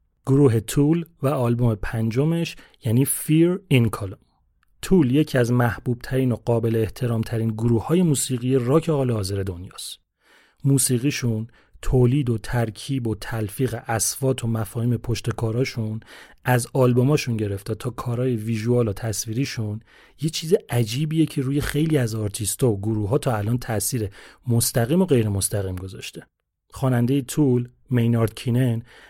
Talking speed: 140 wpm